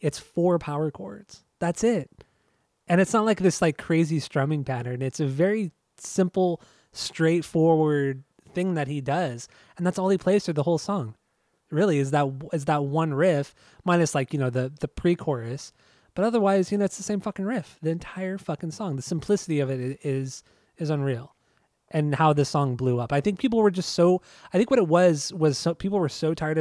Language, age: English, 20-39